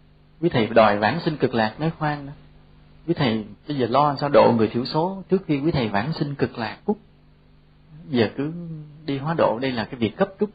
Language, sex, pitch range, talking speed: English, male, 100-150 Hz, 230 wpm